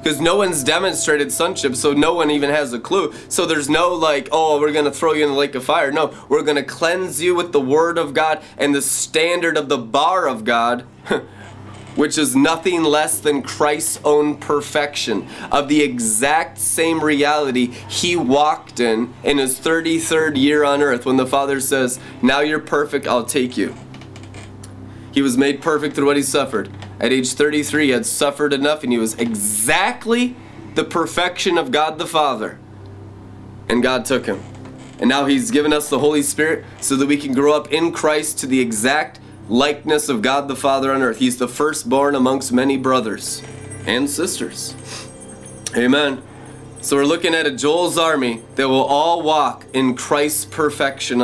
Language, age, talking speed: English, 20-39, 185 wpm